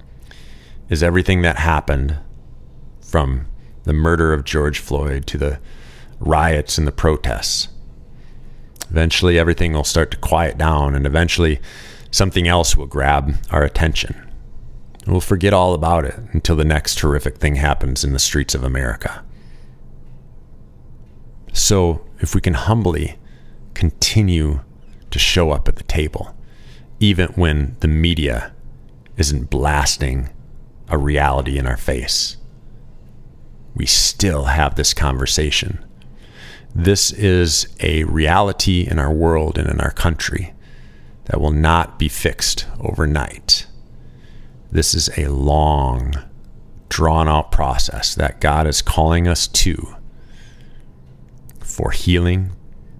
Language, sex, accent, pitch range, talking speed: English, male, American, 70-85 Hz, 120 wpm